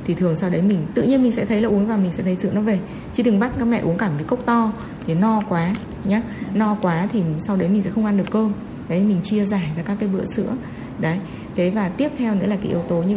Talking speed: 295 wpm